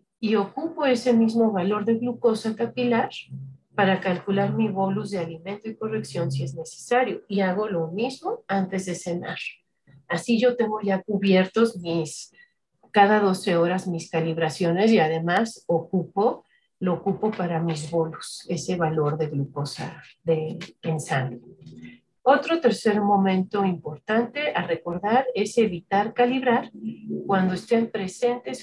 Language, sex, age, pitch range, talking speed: English, female, 40-59, 170-230 Hz, 135 wpm